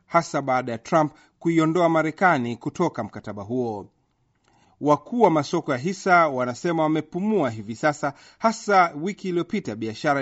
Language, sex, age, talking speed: Swahili, male, 40-59, 125 wpm